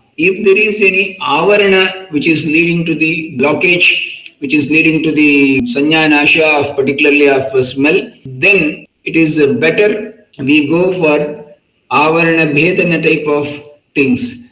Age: 50-69